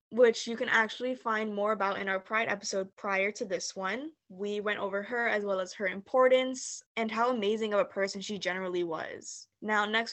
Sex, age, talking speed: female, 10-29, 205 wpm